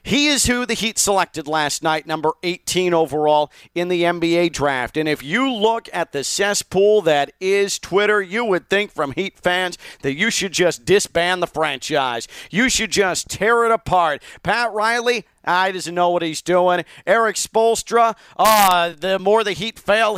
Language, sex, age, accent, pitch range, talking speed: English, male, 40-59, American, 150-205 Hz, 180 wpm